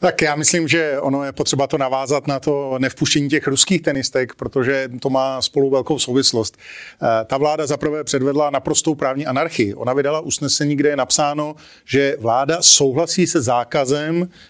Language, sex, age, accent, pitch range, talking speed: Czech, male, 40-59, native, 140-165 Hz, 160 wpm